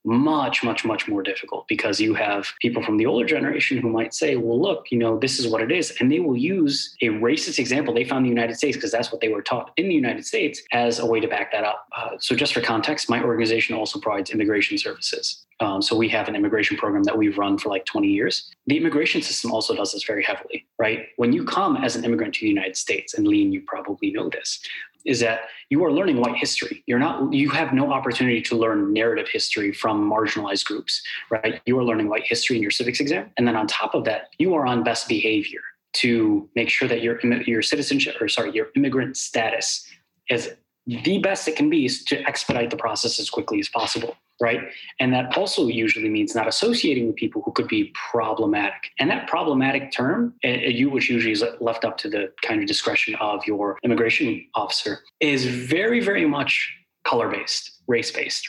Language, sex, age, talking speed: English, male, 20-39, 215 wpm